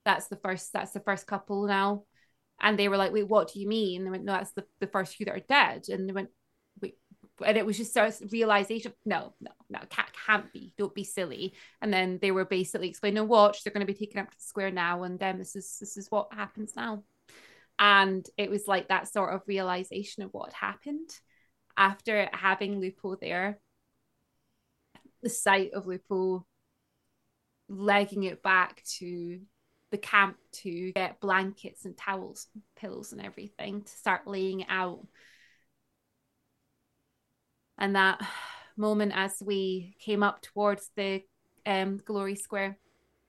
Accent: British